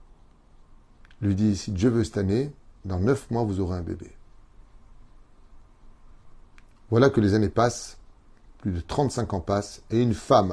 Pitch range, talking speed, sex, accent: 95-125 Hz, 165 wpm, male, French